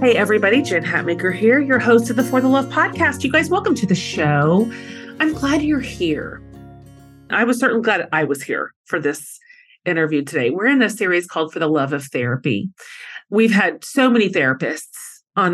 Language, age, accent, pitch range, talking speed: English, 30-49, American, 160-230 Hz, 195 wpm